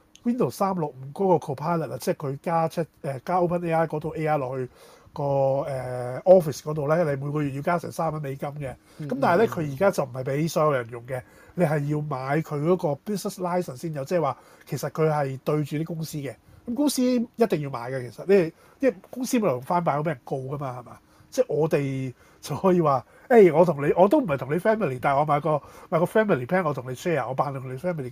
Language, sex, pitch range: Chinese, male, 135-180 Hz